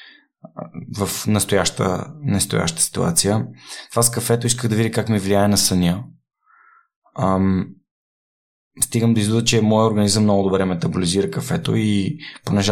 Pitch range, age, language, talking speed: 90-110 Hz, 20-39, Bulgarian, 130 wpm